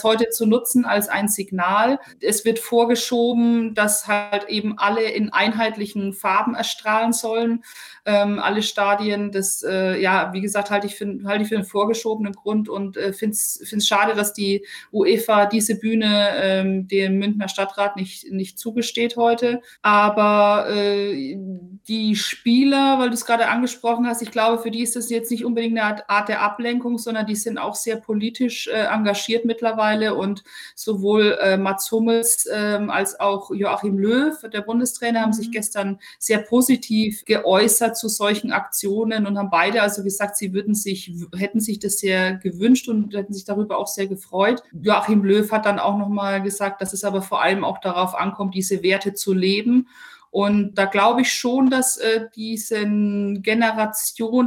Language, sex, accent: German, female, German